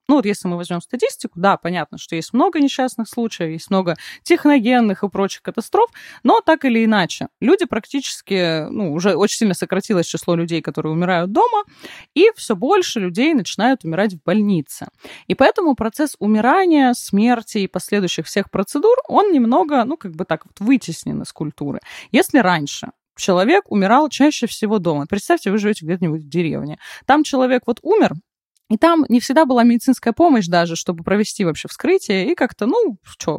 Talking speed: 170 wpm